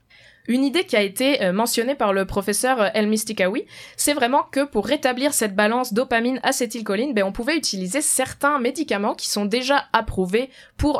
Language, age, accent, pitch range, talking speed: French, 20-39, French, 200-260 Hz, 160 wpm